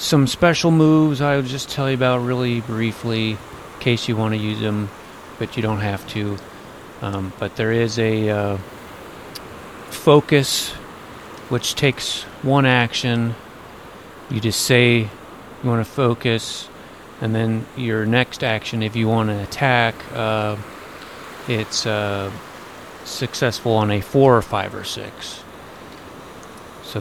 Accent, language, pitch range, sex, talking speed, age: American, English, 105-120 Hz, male, 140 wpm, 30-49